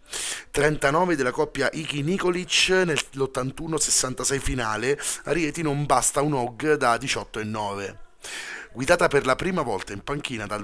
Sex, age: male, 30-49